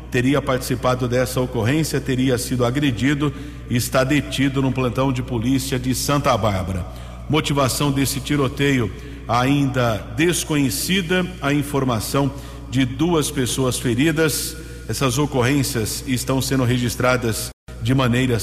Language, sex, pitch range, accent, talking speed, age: English, male, 125-145 Hz, Brazilian, 115 wpm, 50-69